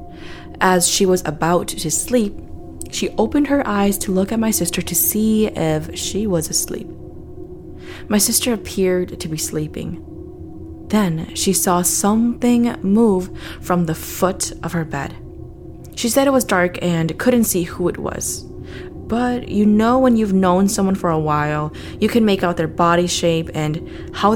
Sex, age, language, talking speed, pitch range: female, 20-39, English, 170 wpm, 135-200 Hz